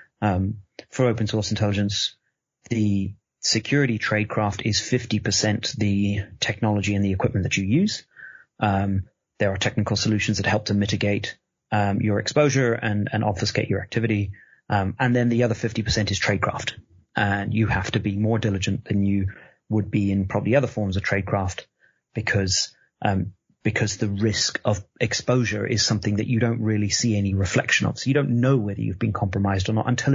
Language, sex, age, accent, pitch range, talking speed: English, male, 30-49, British, 100-115 Hz, 180 wpm